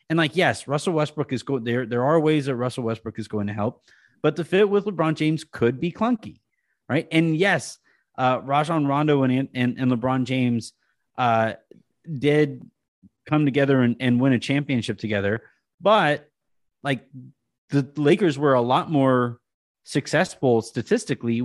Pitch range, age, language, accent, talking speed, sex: 120-150 Hz, 30-49, English, American, 160 wpm, male